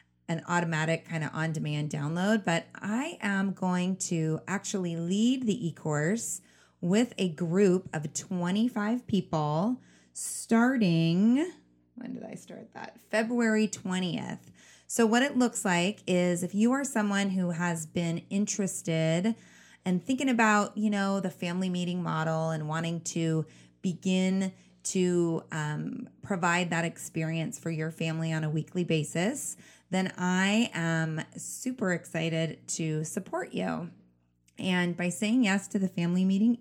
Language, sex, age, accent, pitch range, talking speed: English, female, 30-49, American, 165-205 Hz, 140 wpm